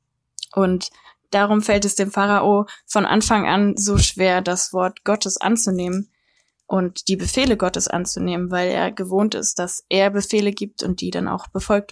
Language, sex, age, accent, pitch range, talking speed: German, female, 20-39, German, 190-210 Hz, 165 wpm